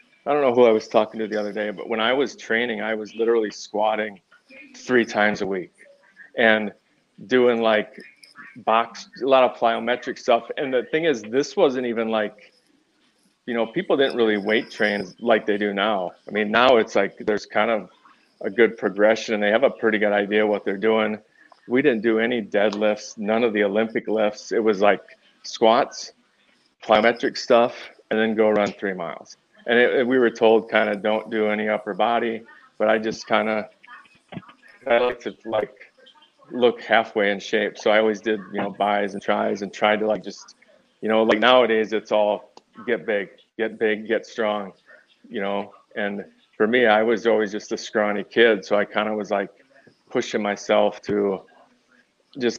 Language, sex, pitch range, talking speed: English, male, 105-115 Hz, 190 wpm